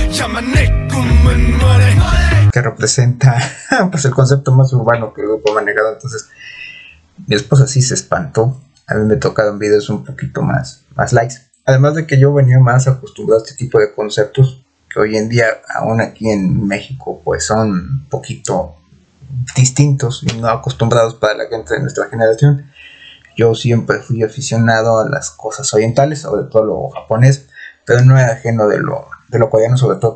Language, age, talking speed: Spanish, 30-49, 165 wpm